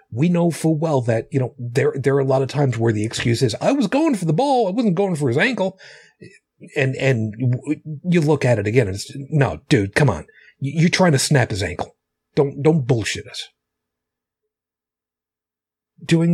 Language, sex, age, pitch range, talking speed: English, male, 40-59, 115-155 Hz, 200 wpm